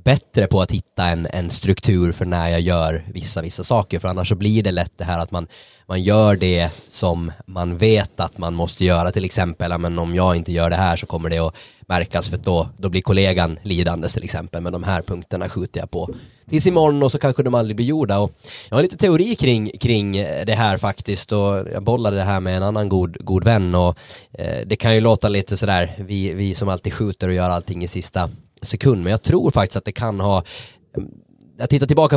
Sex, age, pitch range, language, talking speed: male, 20-39, 90-110 Hz, Swedish, 235 wpm